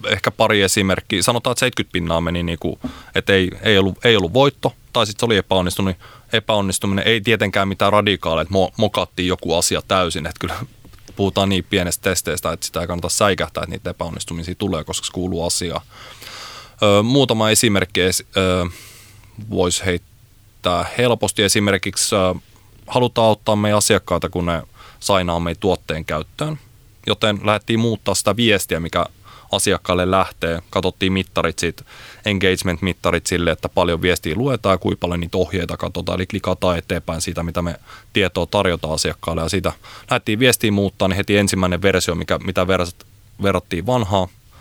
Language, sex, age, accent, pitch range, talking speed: Finnish, male, 20-39, native, 90-105 Hz, 150 wpm